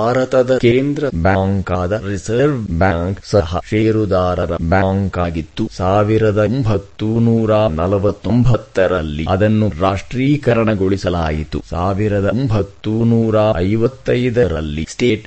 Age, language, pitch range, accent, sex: 30-49, English, 90-110 Hz, Indian, male